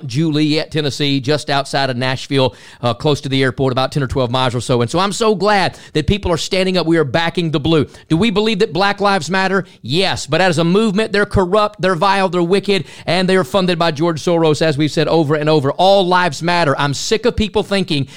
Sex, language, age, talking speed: male, English, 40-59, 240 wpm